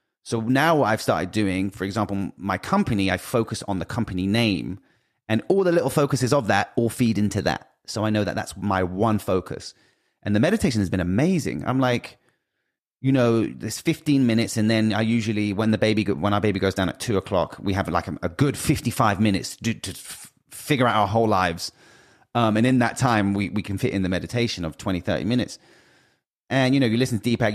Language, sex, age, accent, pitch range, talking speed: English, male, 30-49, British, 100-125 Hz, 220 wpm